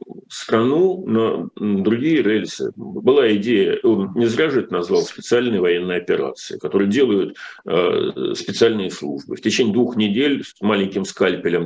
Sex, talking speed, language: male, 140 wpm, Russian